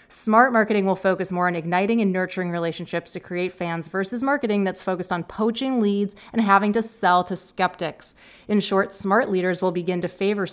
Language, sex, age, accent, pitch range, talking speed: English, female, 30-49, American, 180-215 Hz, 195 wpm